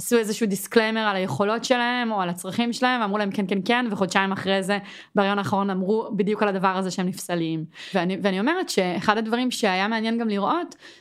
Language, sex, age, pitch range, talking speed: Hebrew, female, 20-39, 195-260 Hz, 195 wpm